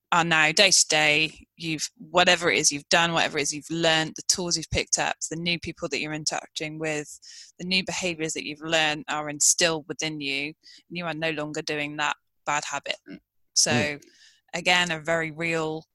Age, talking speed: 20-39, 195 wpm